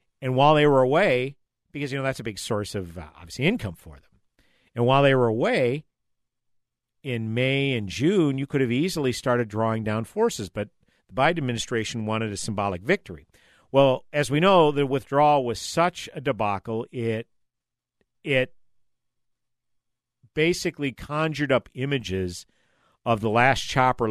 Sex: male